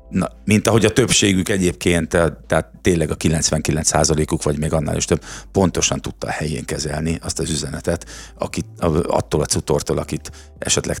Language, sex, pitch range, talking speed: Hungarian, male, 80-95 Hz, 140 wpm